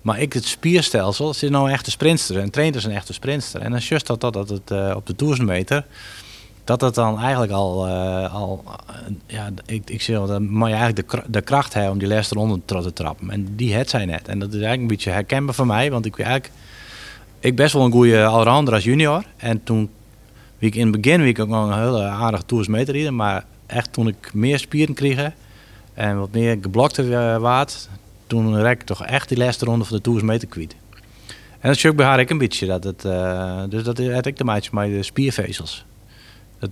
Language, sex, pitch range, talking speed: Dutch, male, 100-125 Hz, 235 wpm